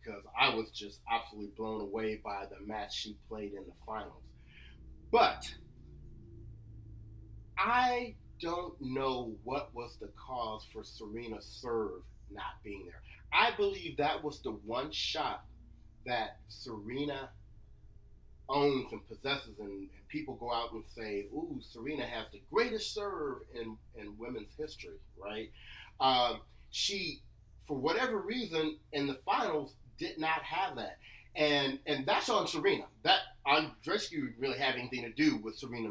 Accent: American